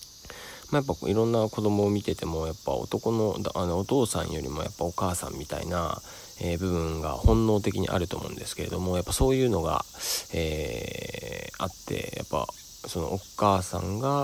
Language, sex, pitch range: Japanese, male, 85-100 Hz